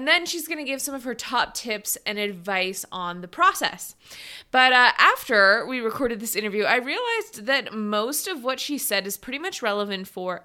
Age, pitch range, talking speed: 20-39, 195-275 Hz, 205 wpm